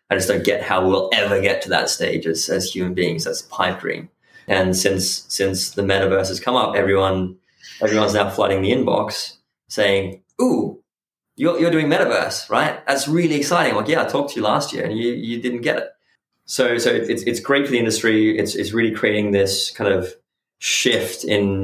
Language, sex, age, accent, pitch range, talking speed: English, male, 20-39, British, 95-110 Hz, 205 wpm